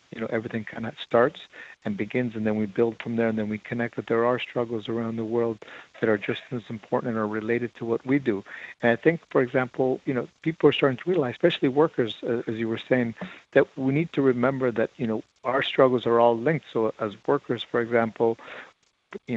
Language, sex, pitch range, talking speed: English, male, 115-140 Hz, 230 wpm